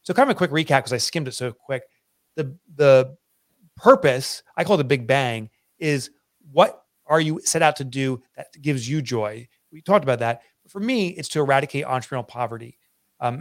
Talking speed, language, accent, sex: 205 wpm, English, American, male